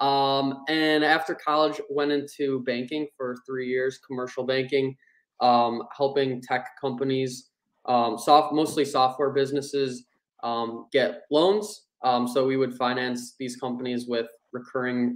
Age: 20-39